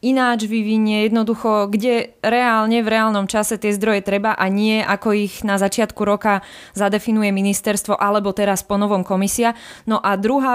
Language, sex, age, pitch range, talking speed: Slovak, female, 20-39, 210-240 Hz, 160 wpm